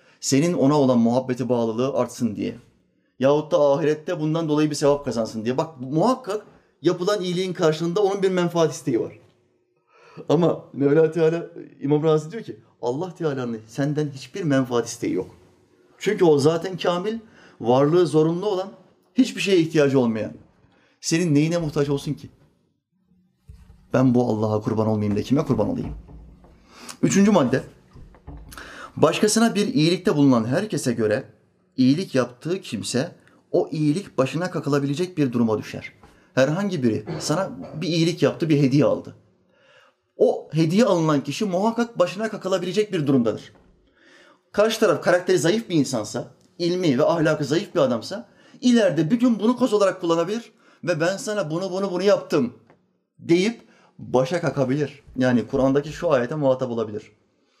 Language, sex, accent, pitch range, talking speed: Turkish, male, native, 135-185 Hz, 140 wpm